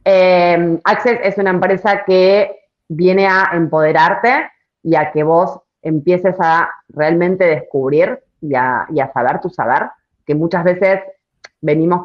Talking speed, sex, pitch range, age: 140 wpm, female, 155-210 Hz, 30-49